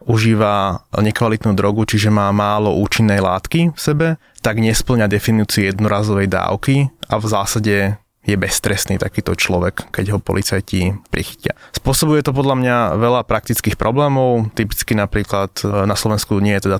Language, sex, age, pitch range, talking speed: Slovak, male, 20-39, 100-115 Hz, 145 wpm